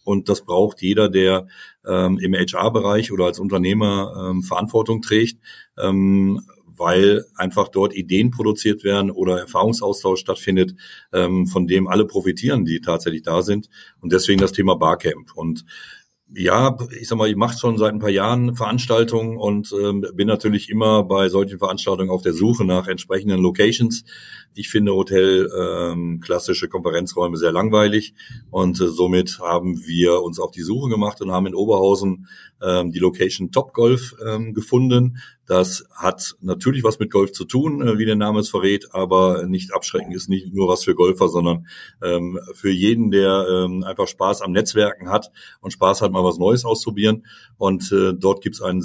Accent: German